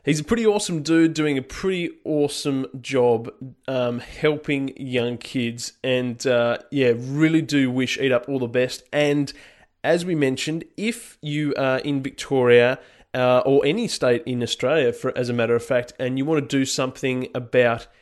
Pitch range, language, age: 125-150 Hz, English, 20-39